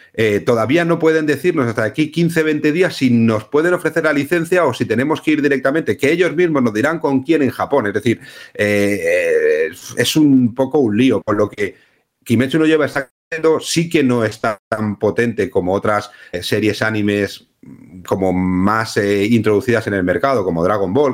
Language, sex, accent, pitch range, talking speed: Spanish, male, Spanish, 115-145 Hz, 185 wpm